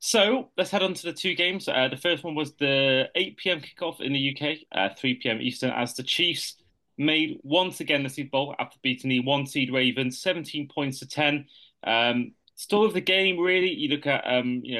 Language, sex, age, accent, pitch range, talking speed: English, male, 20-39, British, 130-155 Hz, 220 wpm